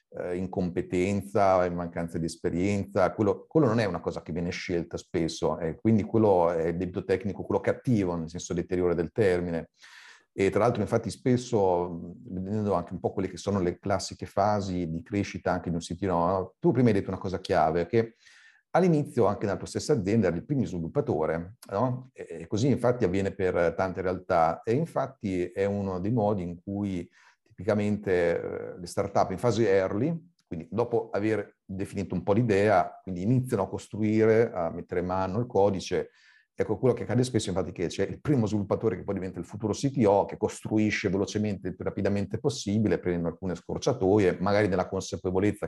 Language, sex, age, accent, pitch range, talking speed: Italian, male, 40-59, native, 90-115 Hz, 185 wpm